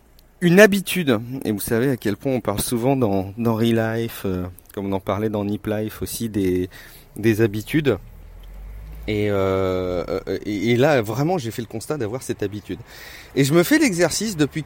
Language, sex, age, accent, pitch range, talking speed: French, male, 30-49, French, 100-135 Hz, 190 wpm